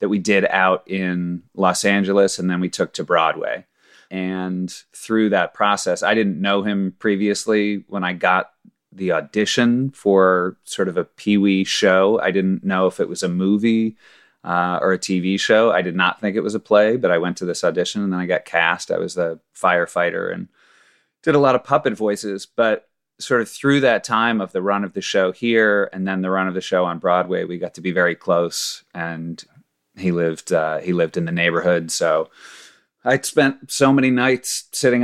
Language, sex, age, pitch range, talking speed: English, male, 30-49, 90-105 Hz, 205 wpm